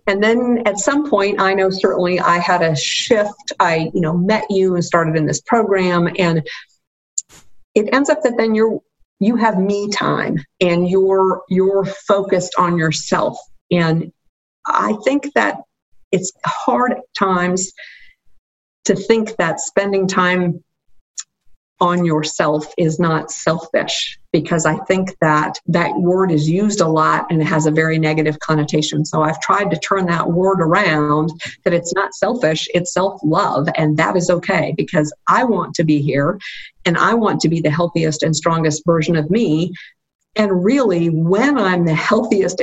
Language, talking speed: English, 165 wpm